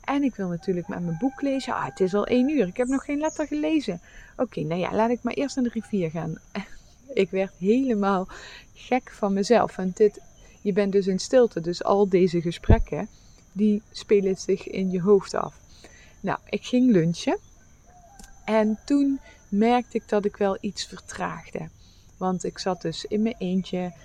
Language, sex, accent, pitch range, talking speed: English, female, Dutch, 175-215 Hz, 185 wpm